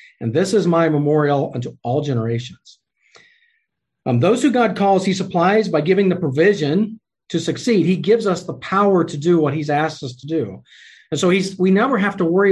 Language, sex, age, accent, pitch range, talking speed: English, male, 40-59, American, 150-200 Hz, 200 wpm